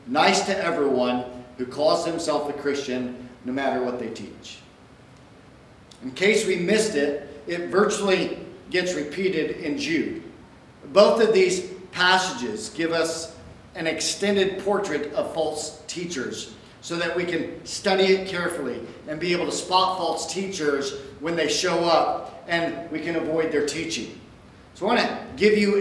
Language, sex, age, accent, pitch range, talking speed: English, male, 50-69, American, 145-190 Hz, 150 wpm